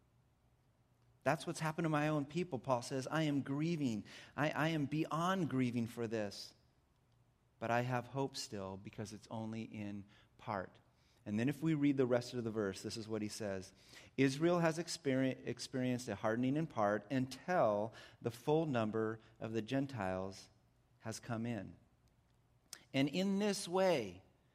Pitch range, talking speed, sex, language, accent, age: 125-185 Hz, 160 wpm, male, English, American, 40-59